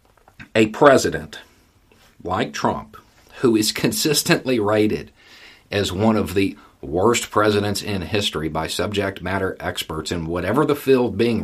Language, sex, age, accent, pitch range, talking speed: English, male, 50-69, American, 90-115 Hz, 130 wpm